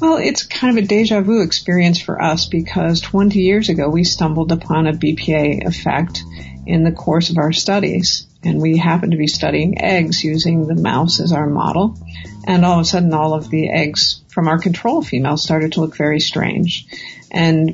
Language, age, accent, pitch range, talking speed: English, 50-69, American, 160-180 Hz, 195 wpm